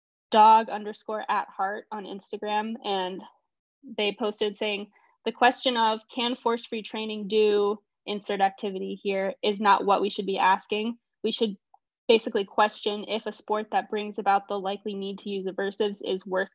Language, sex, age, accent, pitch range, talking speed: English, female, 10-29, American, 200-225 Hz, 165 wpm